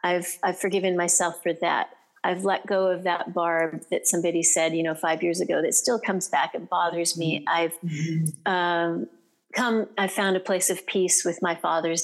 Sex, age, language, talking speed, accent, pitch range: female, 40-59, English, 195 wpm, American, 185-225 Hz